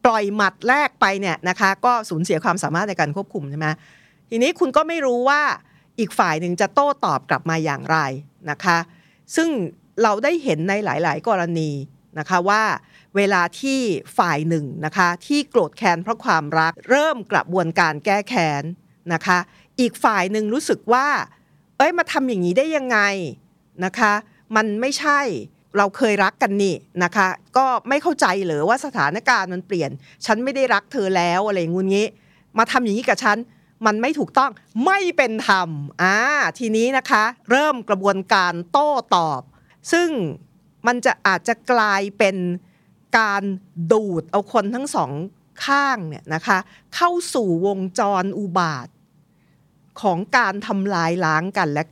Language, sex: Thai, female